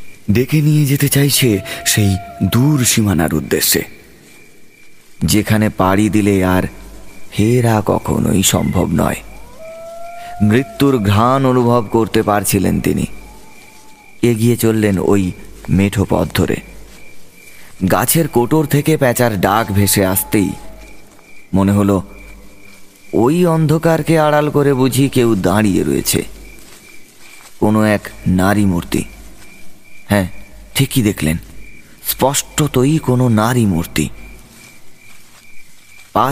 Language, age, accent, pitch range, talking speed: Bengali, 30-49, native, 100-130 Hz, 90 wpm